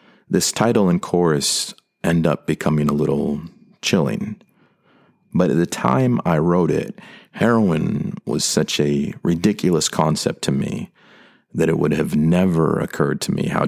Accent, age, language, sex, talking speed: American, 40-59, English, male, 150 wpm